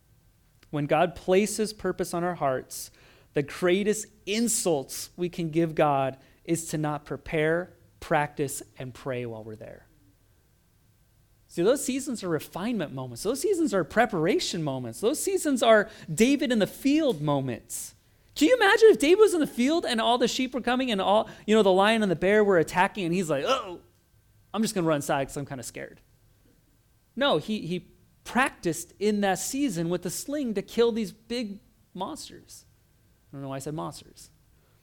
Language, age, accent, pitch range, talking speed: English, 30-49, American, 130-205 Hz, 185 wpm